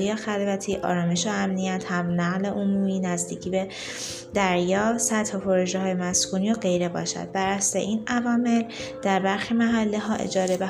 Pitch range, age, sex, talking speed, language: 180-215 Hz, 20-39, female, 140 wpm, Persian